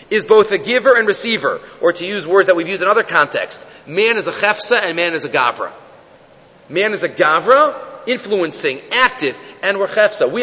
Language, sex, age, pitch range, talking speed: English, male, 40-59, 195-300 Hz, 200 wpm